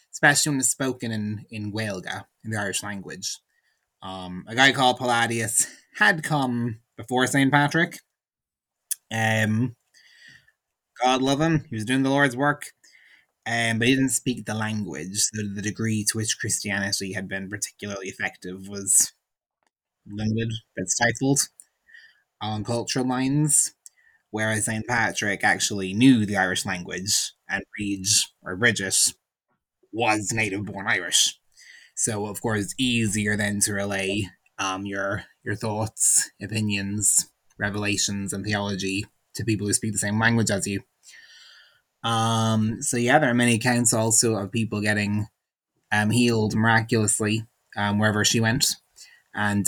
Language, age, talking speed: English, 20-39, 140 wpm